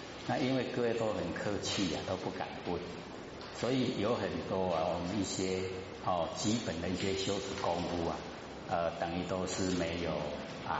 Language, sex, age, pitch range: Chinese, male, 50-69, 85-105 Hz